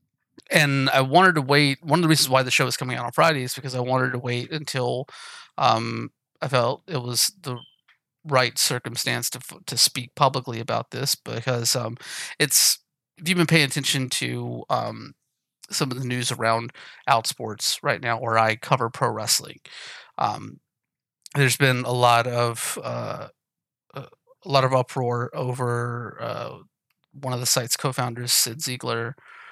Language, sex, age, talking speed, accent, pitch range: English, male, 30-49, 165 wpm, American, 120-135 Hz